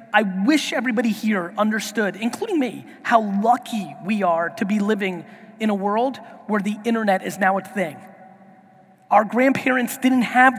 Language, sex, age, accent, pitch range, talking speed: English, male, 30-49, American, 215-265 Hz, 160 wpm